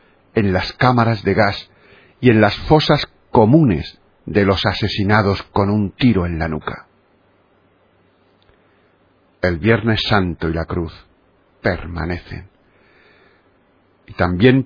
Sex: male